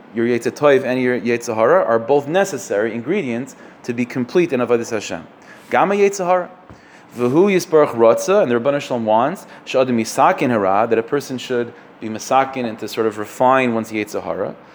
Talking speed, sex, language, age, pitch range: 165 wpm, male, English, 30-49, 115-140 Hz